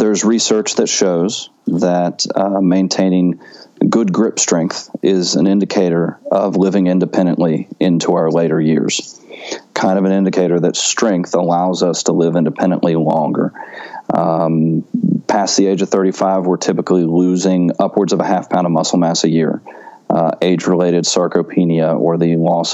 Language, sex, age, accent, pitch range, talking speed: English, male, 30-49, American, 85-95 Hz, 150 wpm